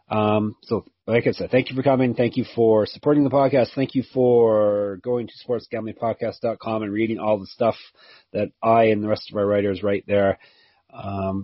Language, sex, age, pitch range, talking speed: English, male, 30-49, 95-120 Hz, 195 wpm